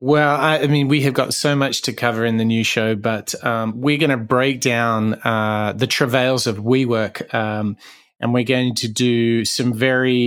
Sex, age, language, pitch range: male, 30-49, English, 115-140 Hz